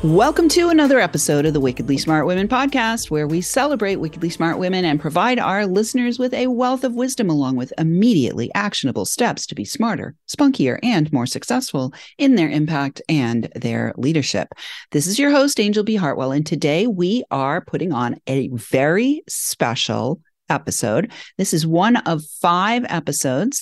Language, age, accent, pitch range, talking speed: English, 40-59, American, 150-245 Hz, 170 wpm